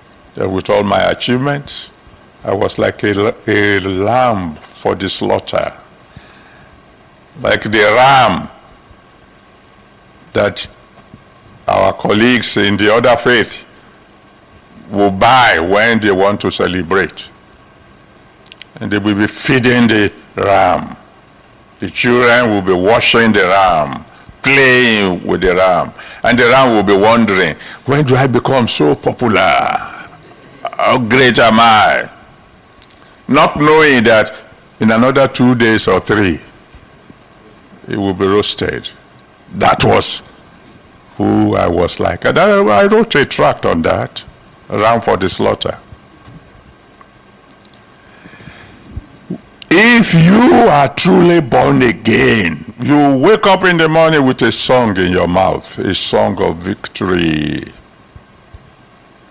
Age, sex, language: 60-79, male, English